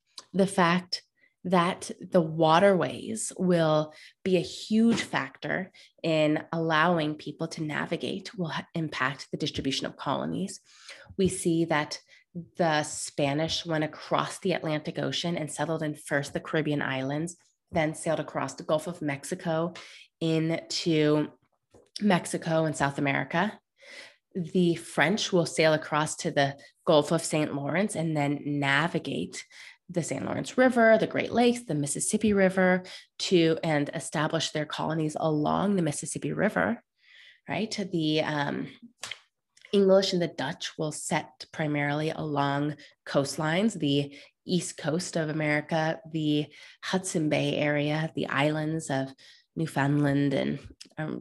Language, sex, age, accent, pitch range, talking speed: English, female, 20-39, American, 150-180 Hz, 130 wpm